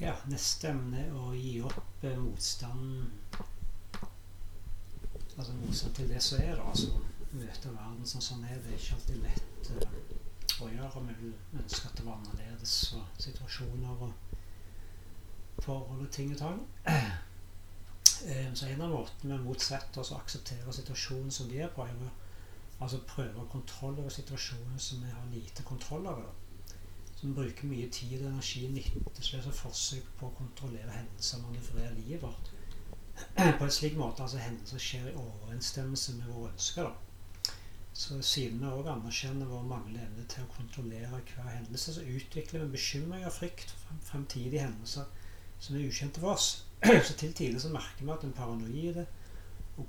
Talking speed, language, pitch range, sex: 165 wpm, English, 100-135 Hz, male